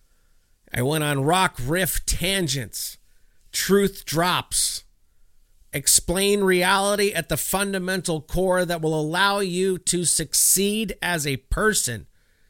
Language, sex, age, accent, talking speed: English, male, 50-69, American, 110 wpm